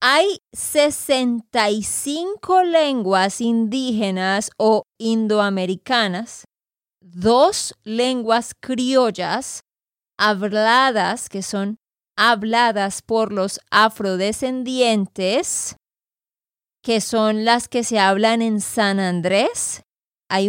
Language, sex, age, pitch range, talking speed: Spanish, female, 20-39, 210-245 Hz, 75 wpm